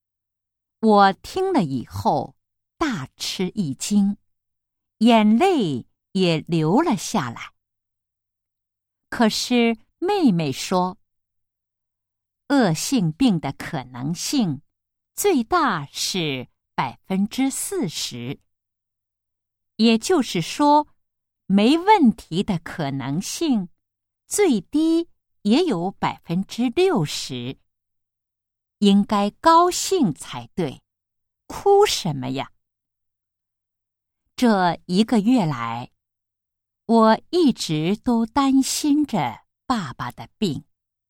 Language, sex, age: Japanese, female, 50-69